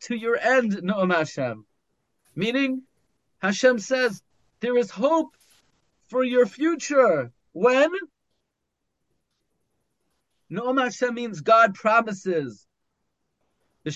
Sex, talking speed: male, 90 wpm